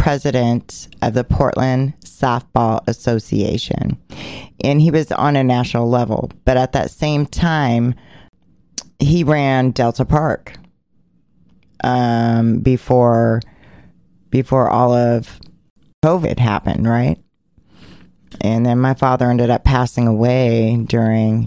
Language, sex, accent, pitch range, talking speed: English, female, American, 115-135 Hz, 110 wpm